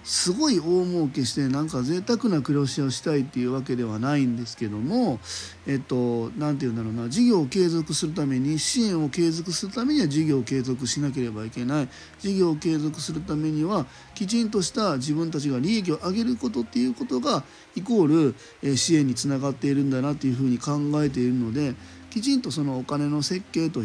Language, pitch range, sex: Japanese, 125-165 Hz, male